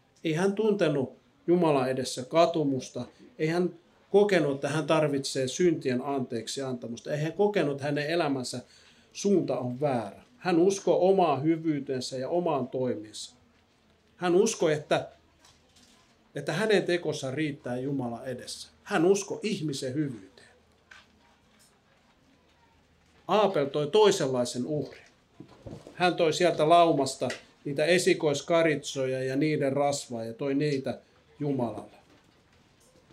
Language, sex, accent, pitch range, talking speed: Finnish, male, native, 125-165 Hz, 110 wpm